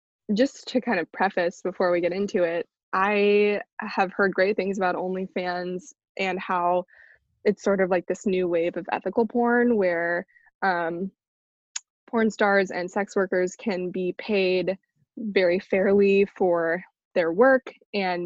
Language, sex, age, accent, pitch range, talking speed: English, female, 20-39, American, 180-230 Hz, 150 wpm